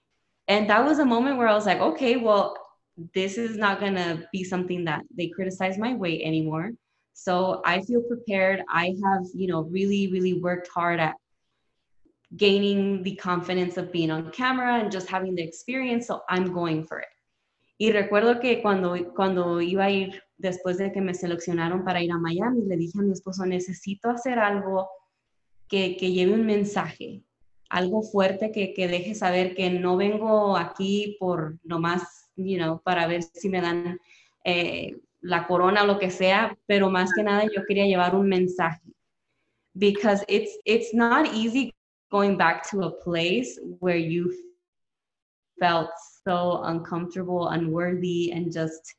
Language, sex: English, female